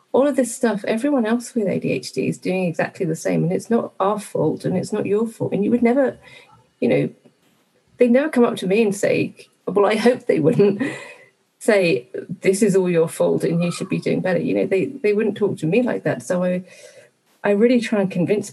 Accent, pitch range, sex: British, 165-210 Hz, female